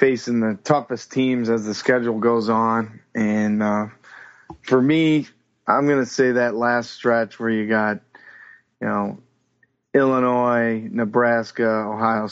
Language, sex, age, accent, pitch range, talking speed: English, male, 30-49, American, 115-130 Hz, 135 wpm